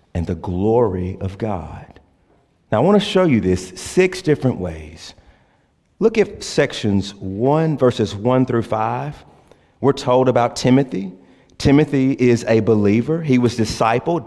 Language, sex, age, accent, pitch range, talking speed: English, male, 40-59, American, 85-115 Hz, 140 wpm